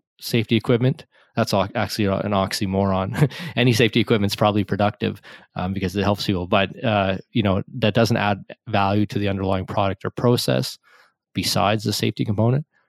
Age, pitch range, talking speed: 20-39, 100-115 Hz, 160 wpm